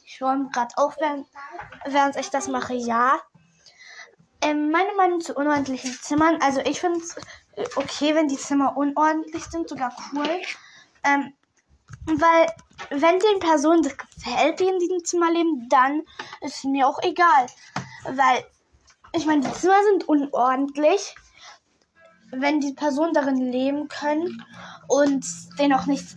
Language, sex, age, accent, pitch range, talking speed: German, female, 10-29, German, 265-320 Hz, 140 wpm